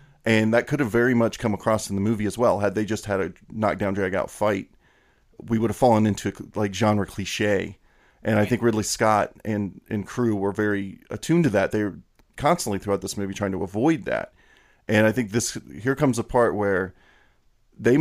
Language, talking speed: English, 210 wpm